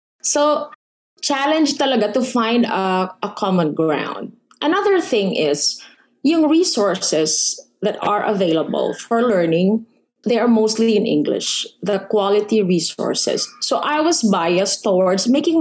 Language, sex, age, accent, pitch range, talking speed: English, female, 20-39, Filipino, 190-255 Hz, 125 wpm